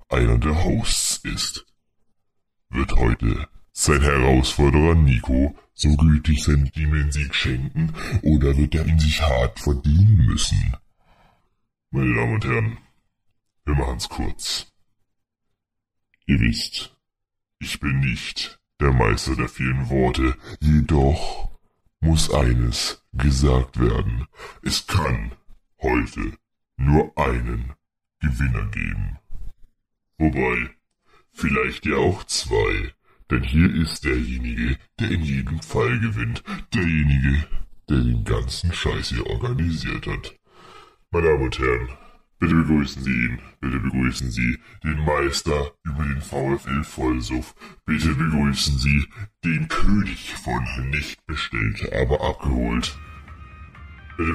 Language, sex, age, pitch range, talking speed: German, female, 70-89, 65-90 Hz, 110 wpm